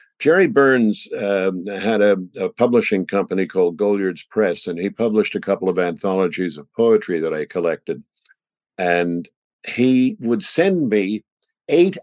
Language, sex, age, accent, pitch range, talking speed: English, male, 50-69, American, 90-110 Hz, 145 wpm